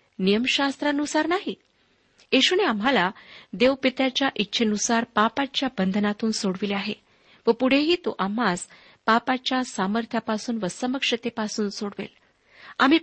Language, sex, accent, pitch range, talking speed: Marathi, female, native, 205-275 Hz, 90 wpm